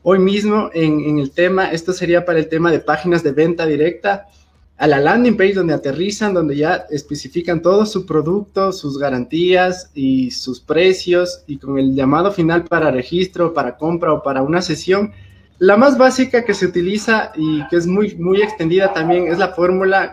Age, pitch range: 20-39, 150-190 Hz